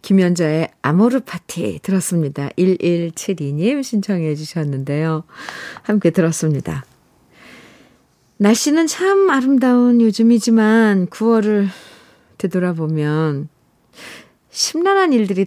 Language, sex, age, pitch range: Korean, female, 50-69, 170-225 Hz